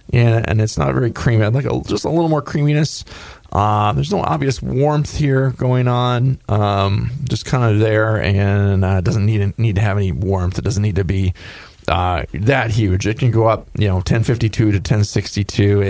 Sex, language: male, English